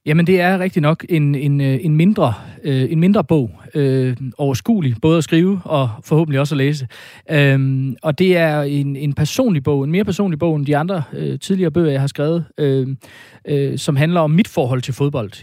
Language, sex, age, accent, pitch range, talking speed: Danish, male, 30-49, native, 125-155 Hz, 170 wpm